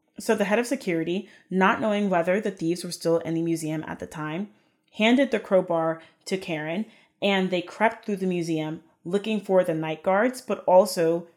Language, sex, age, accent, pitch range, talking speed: English, female, 20-39, American, 165-200 Hz, 190 wpm